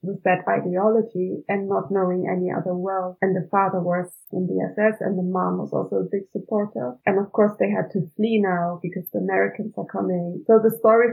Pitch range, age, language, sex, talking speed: 180-210 Hz, 20-39, English, female, 215 wpm